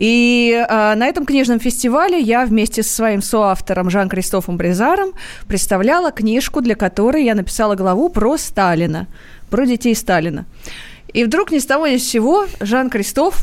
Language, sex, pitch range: Russian, female, 210-275 Hz